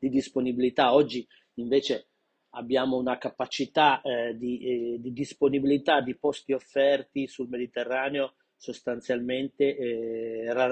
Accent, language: native, Italian